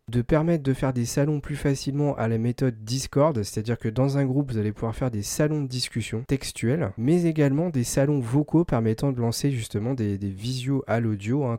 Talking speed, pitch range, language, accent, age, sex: 225 wpm, 110-140 Hz, French, French, 40-59, male